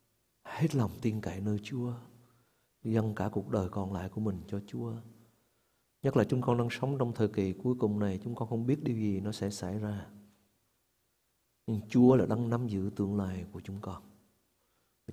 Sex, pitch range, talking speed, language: male, 100-120 Hz, 200 wpm, Vietnamese